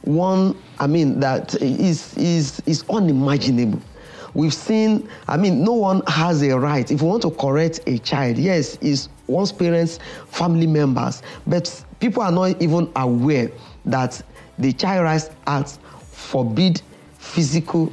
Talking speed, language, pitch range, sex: 145 wpm, English, 135-175 Hz, male